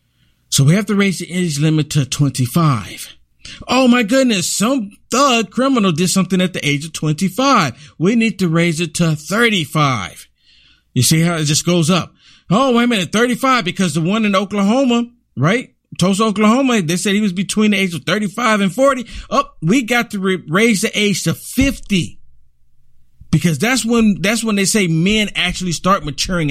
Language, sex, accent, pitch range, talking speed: English, male, American, 150-215 Hz, 185 wpm